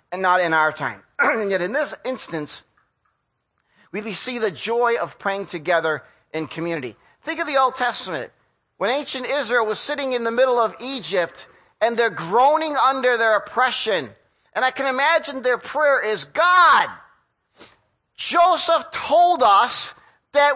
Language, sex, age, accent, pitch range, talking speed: English, male, 50-69, American, 175-275 Hz, 150 wpm